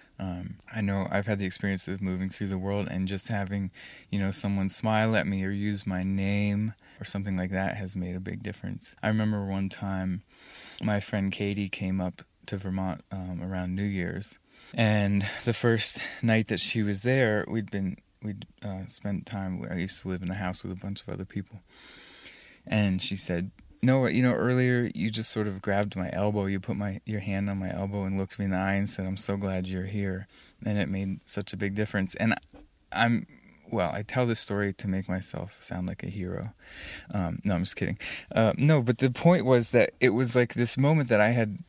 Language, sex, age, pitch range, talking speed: English, male, 20-39, 95-110 Hz, 220 wpm